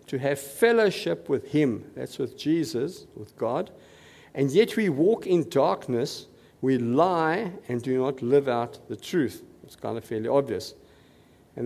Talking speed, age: 160 wpm, 50-69